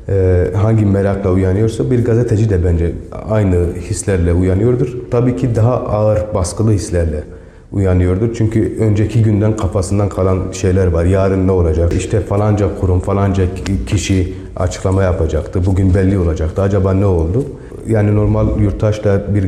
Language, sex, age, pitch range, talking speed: Turkish, male, 40-59, 90-105 Hz, 140 wpm